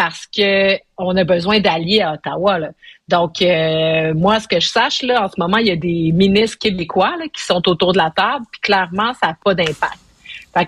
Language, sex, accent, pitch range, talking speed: French, female, Canadian, 170-215 Hz, 215 wpm